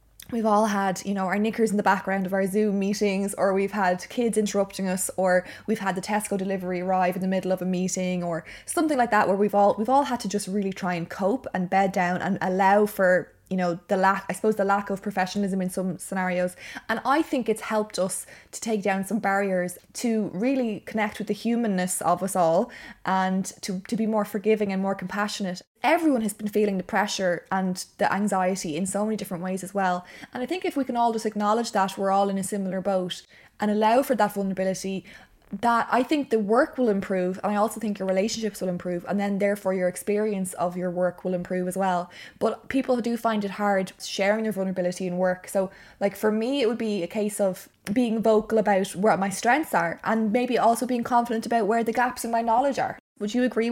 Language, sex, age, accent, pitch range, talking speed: English, female, 20-39, Irish, 190-225 Hz, 230 wpm